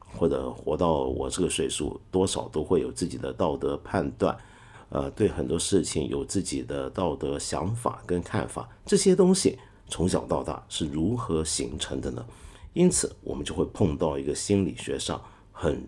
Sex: male